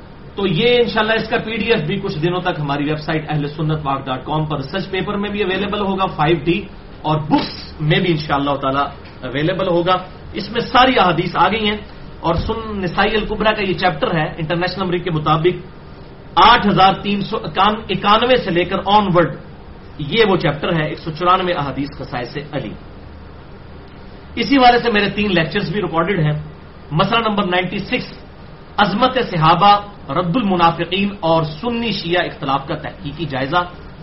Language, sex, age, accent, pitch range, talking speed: English, male, 40-59, Indian, 155-200 Hz, 125 wpm